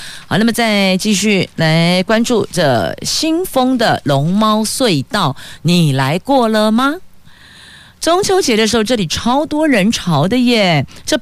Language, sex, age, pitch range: Chinese, female, 50-69, 155-225 Hz